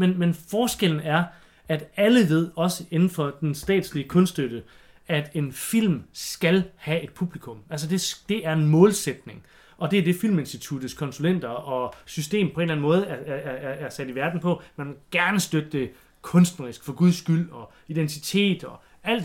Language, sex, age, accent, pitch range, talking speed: English, male, 30-49, Danish, 145-180 Hz, 180 wpm